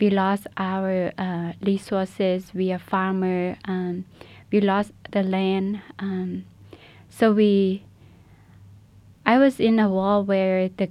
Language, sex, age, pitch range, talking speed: English, female, 20-39, 180-200 Hz, 130 wpm